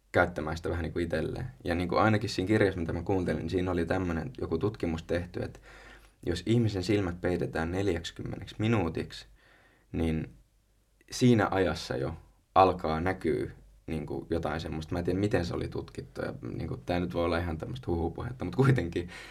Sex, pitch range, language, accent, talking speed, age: male, 85-110 Hz, Finnish, native, 175 wpm, 20-39